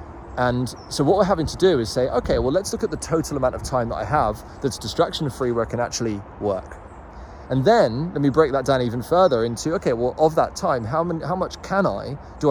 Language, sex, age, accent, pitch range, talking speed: English, male, 20-39, British, 105-135 Hz, 240 wpm